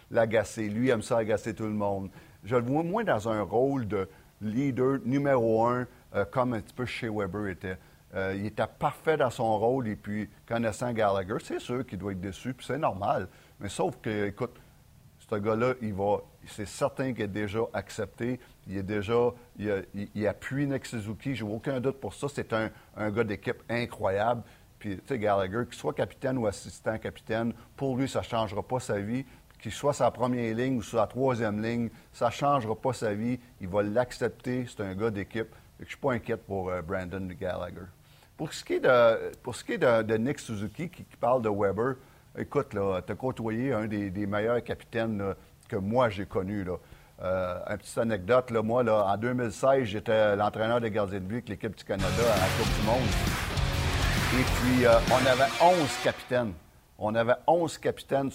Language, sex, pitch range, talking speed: French, male, 105-125 Hz, 200 wpm